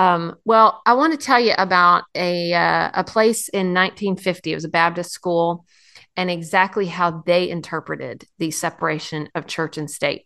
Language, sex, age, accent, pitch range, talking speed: English, female, 40-59, American, 170-215 Hz, 170 wpm